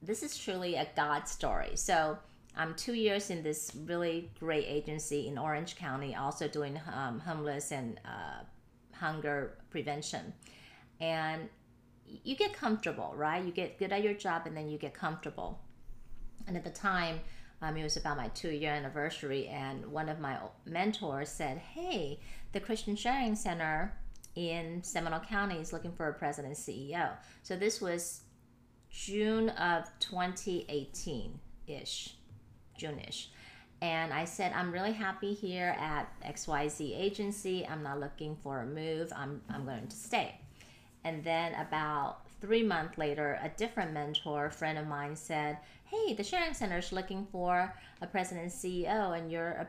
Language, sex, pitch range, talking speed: English, female, 150-180 Hz, 155 wpm